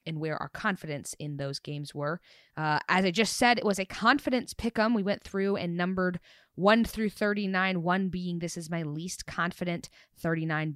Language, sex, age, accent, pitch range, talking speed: English, female, 20-39, American, 155-205 Hz, 190 wpm